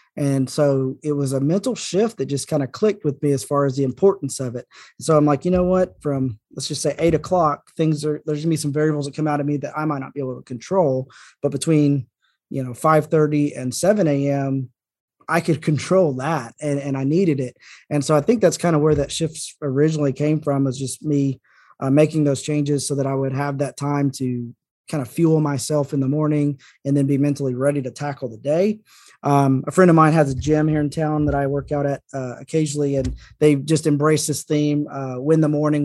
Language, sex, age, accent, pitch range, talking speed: English, male, 20-39, American, 135-155 Hz, 240 wpm